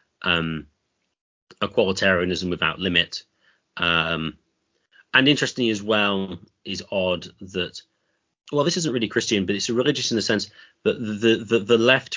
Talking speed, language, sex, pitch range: 140 wpm, English, male, 85-105 Hz